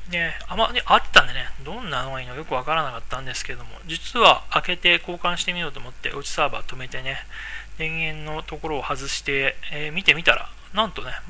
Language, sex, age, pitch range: Japanese, male, 20-39, 130-165 Hz